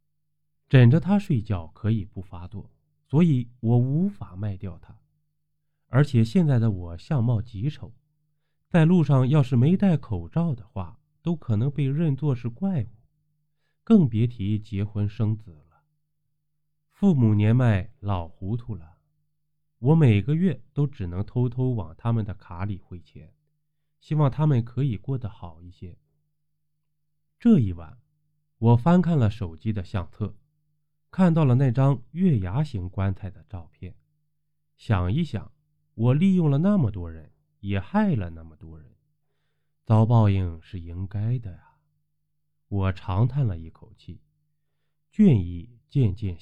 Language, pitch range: Chinese, 95-150 Hz